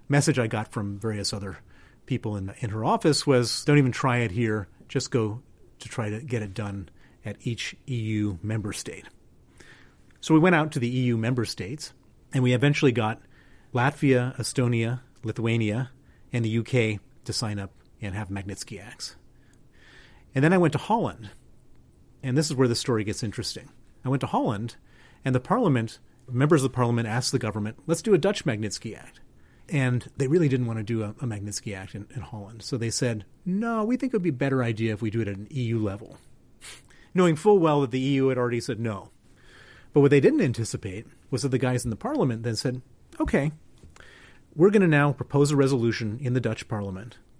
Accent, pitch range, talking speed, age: American, 110-135 Hz, 200 wpm, 40-59